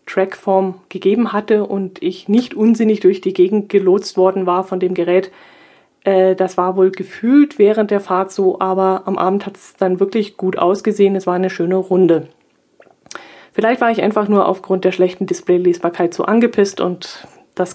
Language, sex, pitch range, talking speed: German, female, 185-220 Hz, 175 wpm